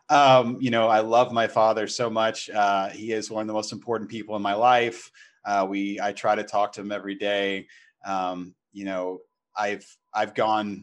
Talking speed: 205 wpm